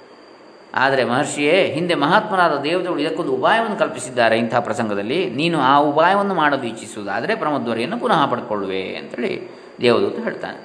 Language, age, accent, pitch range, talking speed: Kannada, 20-39, native, 115-140 Hz, 125 wpm